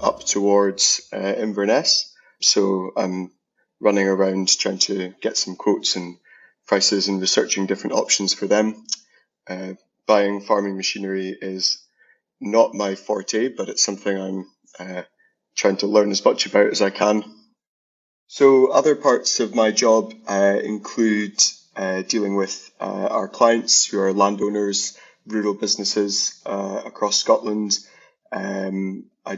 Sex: male